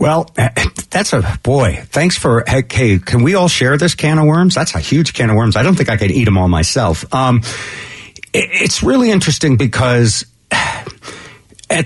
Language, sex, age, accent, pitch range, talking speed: English, male, 50-69, American, 100-135 Hz, 180 wpm